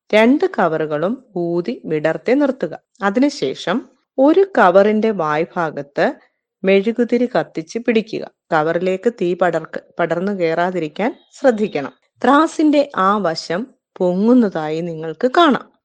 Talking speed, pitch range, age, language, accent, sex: 90 wpm, 170-245 Hz, 30-49, Malayalam, native, female